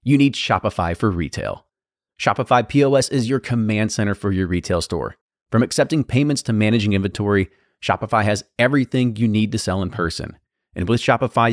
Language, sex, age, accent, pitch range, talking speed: English, male, 30-49, American, 100-130 Hz, 170 wpm